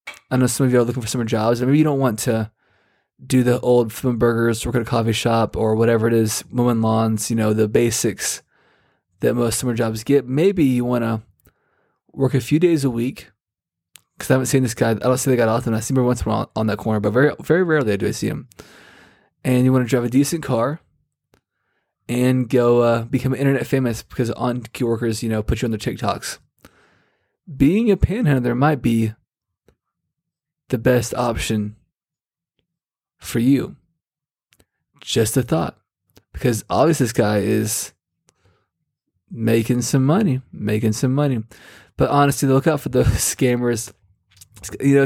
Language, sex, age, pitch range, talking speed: English, male, 20-39, 110-135 Hz, 185 wpm